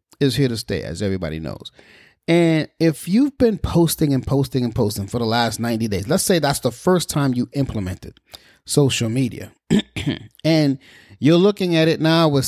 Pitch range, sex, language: 125-170 Hz, male, English